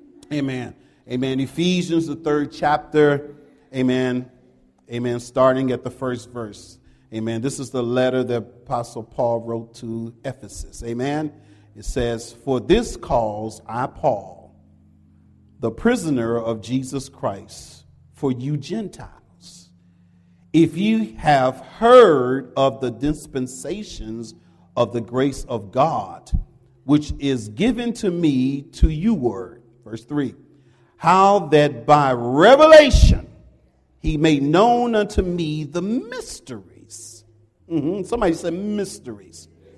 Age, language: 40-59, English